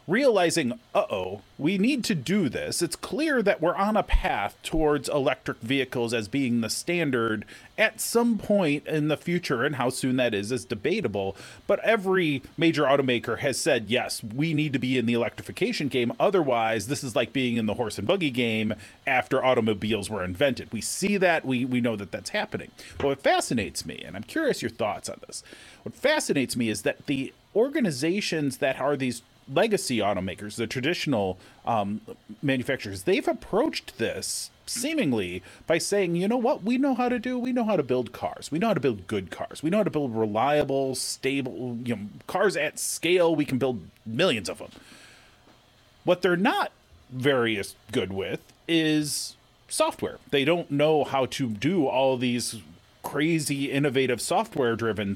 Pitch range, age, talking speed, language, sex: 120-165 Hz, 30-49, 180 wpm, English, male